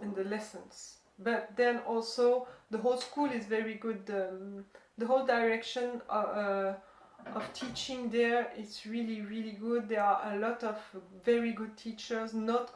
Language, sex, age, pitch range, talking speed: English, female, 30-49, 205-245 Hz, 160 wpm